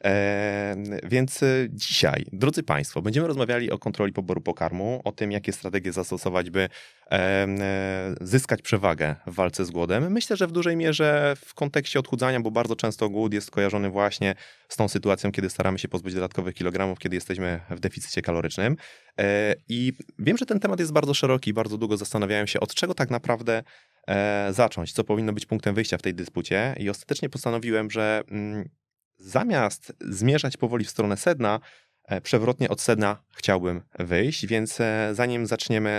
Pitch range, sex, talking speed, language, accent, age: 95-120 Hz, male, 160 wpm, Polish, native, 20-39